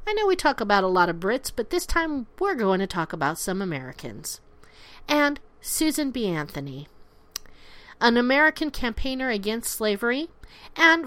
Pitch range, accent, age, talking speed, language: 185-275 Hz, American, 50-69, 155 wpm, English